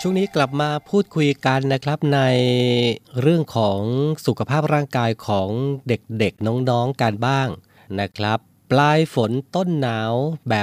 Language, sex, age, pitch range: Thai, male, 30-49, 110-130 Hz